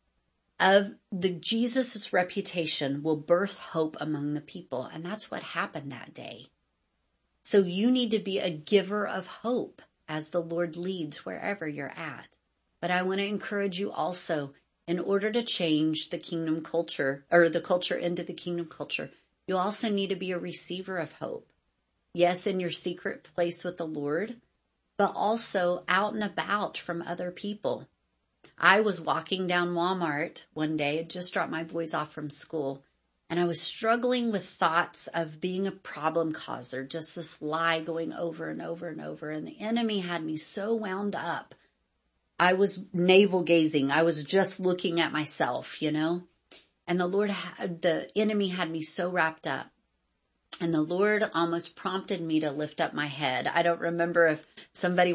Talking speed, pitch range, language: 170 wpm, 155-190 Hz, English